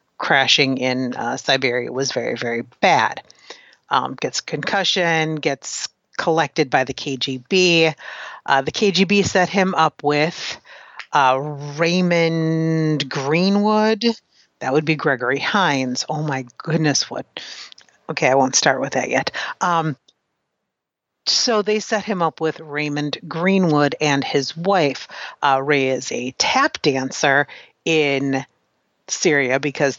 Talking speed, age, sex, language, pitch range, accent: 125 wpm, 40-59, female, English, 135-170 Hz, American